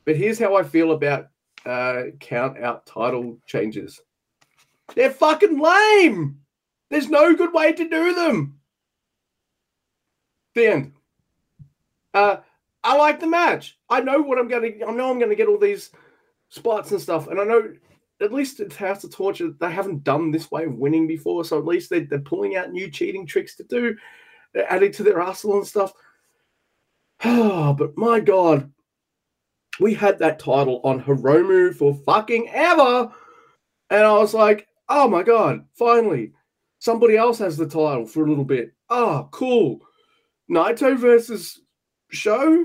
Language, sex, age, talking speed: English, male, 30-49, 165 wpm